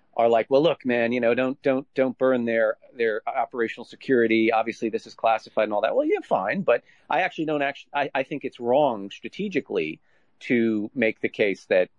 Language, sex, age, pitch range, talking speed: English, male, 40-59, 105-160 Hz, 210 wpm